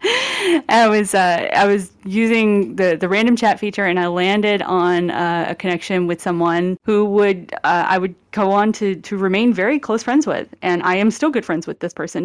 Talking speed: 210 wpm